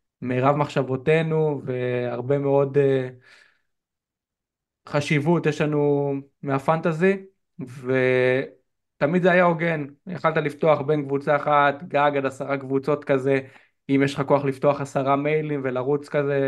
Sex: male